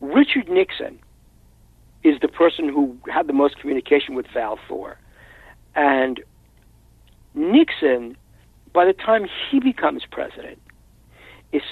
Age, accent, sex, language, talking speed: 60-79, American, male, English, 115 wpm